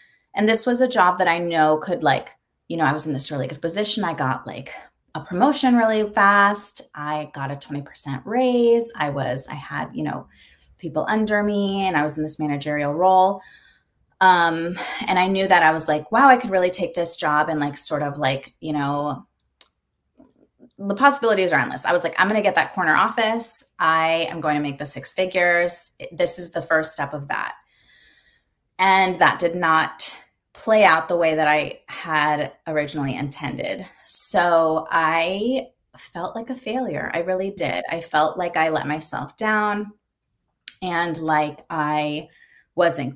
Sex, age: female, 20-39